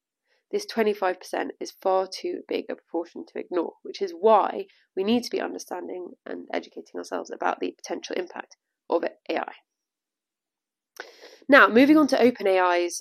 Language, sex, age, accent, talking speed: English, female, 20-39, British, 150 wpm